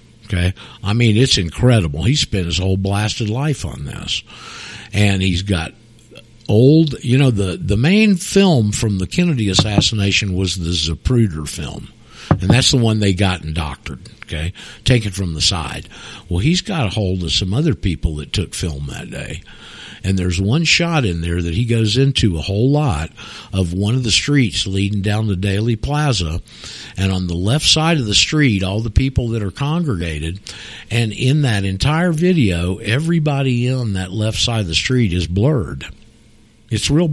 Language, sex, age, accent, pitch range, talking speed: English, male, 50-69, American, 90-125 Hz, 185 wpm